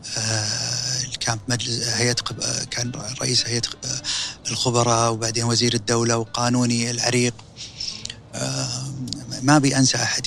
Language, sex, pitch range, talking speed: Arabic, male, 115-135 Hz, 90 wpm